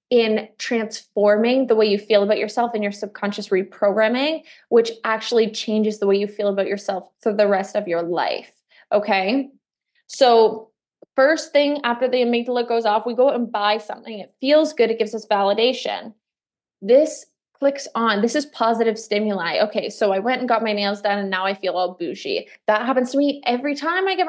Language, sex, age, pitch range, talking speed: English, female, 20-39, 210-275 Hz, 195 wpm